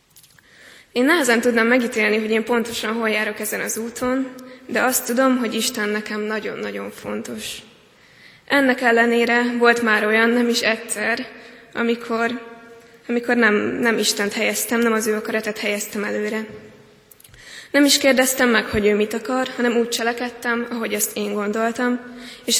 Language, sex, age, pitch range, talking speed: Hungarian, female, 20-39, 215-240 Hz, 150 wpm